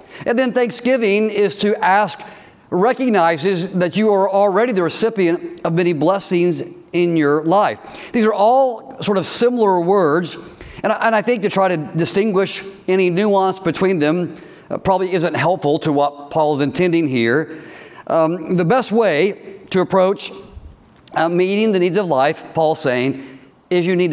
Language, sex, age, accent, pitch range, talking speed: English, male, 50-69, American, 165-205 Hz, 150 wpm